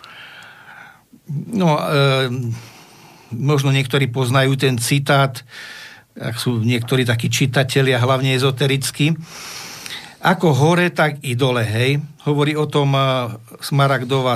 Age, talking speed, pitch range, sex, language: 50-69, 95 wpm, 125-150 Hz, male, Slovak